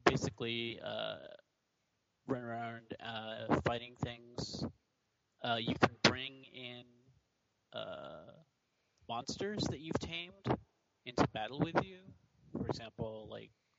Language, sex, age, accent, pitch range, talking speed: English, male, 30-49, American, 110-130 Hz, 105 wpm